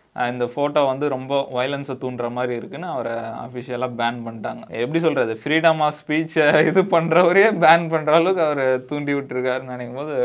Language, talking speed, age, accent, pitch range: Tamil, 145 wpm, 20-39, native, 125-150 Hz